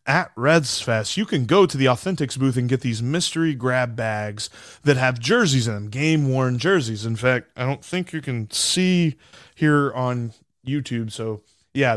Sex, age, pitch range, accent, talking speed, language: male, 20-39, 115-135 Hz, American, 180 wpm, English